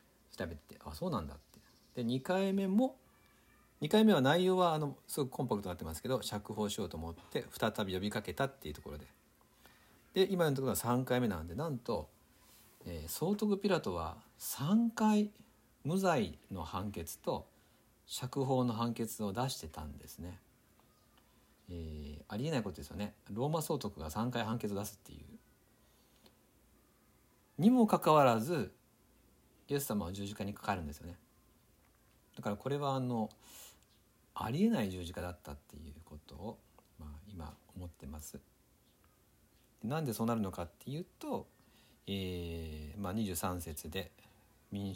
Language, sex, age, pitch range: Japanese, male, 50-69, 85-125 Hz